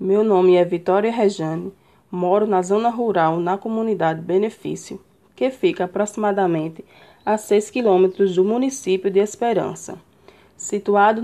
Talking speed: 125 wpm